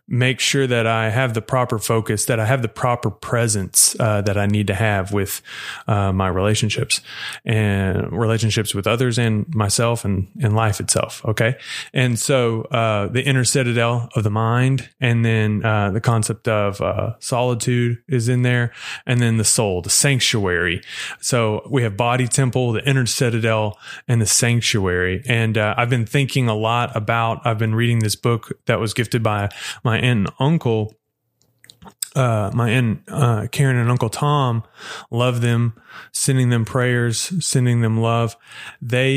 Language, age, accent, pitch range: English, 30-49, American, 110-125 Hz